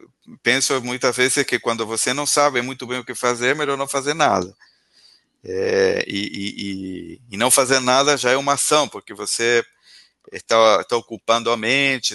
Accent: Brazilian